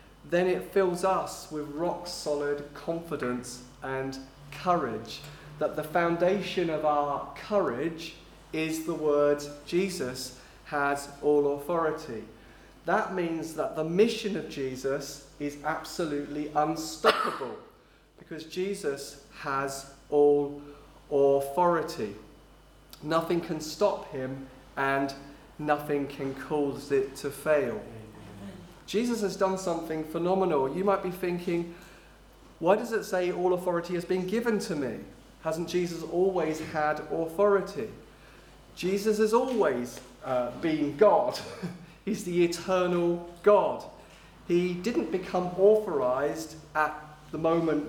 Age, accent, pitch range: 30-49, British, 145-180 Hz